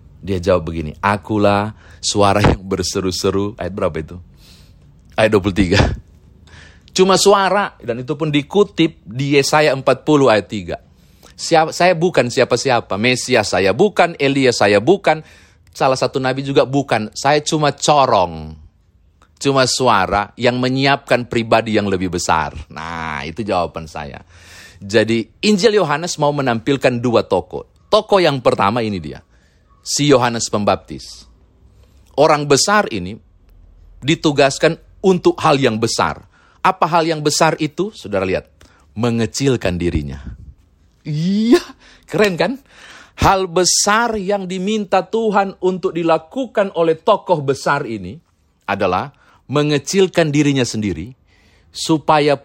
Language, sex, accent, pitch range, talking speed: Indonesian, male, native, 95-155 Hz, 120 wpm